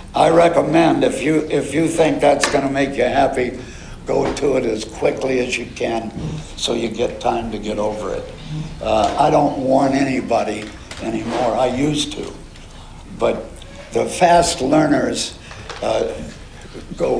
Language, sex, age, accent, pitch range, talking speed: English, male, 60-79, American, 105-145 Hz, 155 wpm